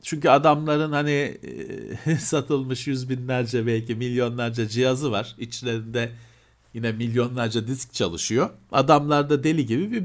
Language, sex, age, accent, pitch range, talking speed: Turkish, male, 50-69, native, 110-155 Hz, 115 wpm